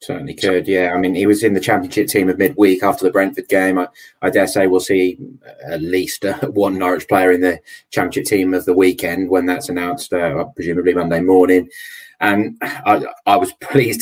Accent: British